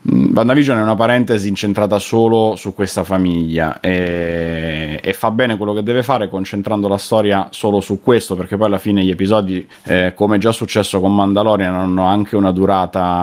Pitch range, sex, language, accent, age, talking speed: 95-105 Hz, male, Italian, native, 30-49, 175 wpm